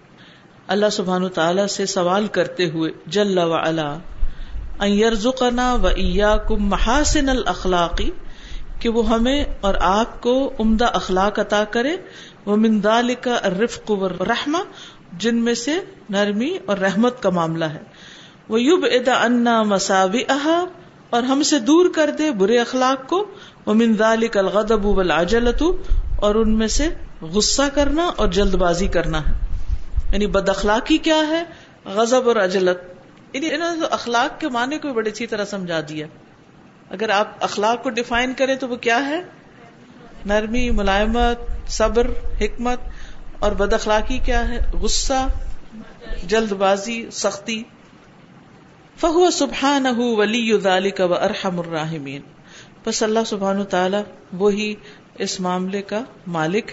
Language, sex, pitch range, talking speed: Urdu, female, 185-240 Hz, 125 wpm